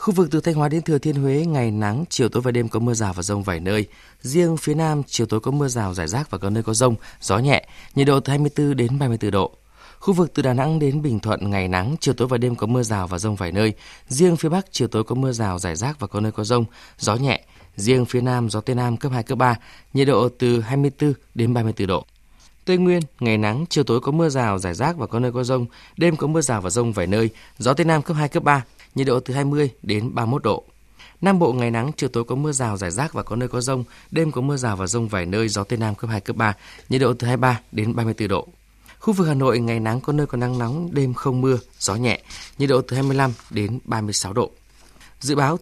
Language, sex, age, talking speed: Vietnamese, male, 20-39, 265 wpm